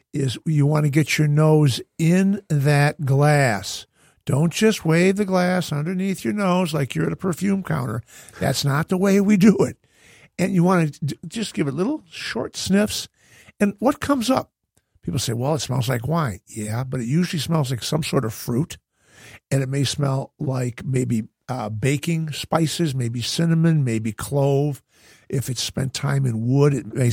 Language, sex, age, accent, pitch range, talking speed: English, male, 50-69, American, 130-170 Hz, 185 wpm